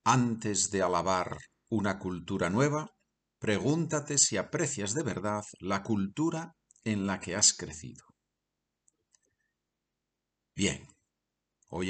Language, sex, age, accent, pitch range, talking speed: Spanish, male, 50-69, Spanish, 95-130 Hz, 100 wpm